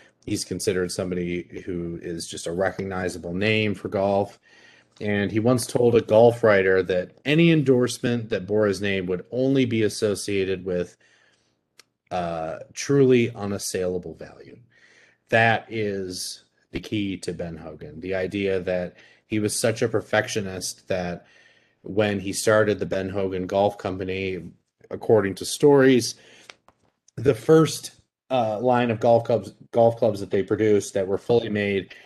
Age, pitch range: 30-49, 95-115 Hz